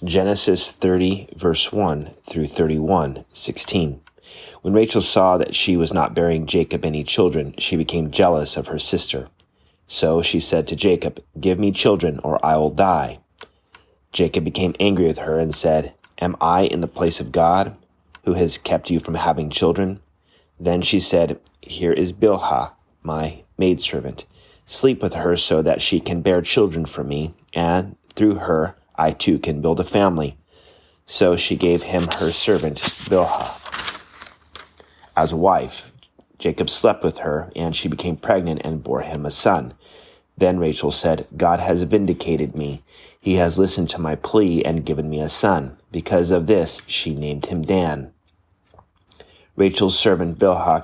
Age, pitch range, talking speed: 30-49, 80-90 Hz, 160 wpm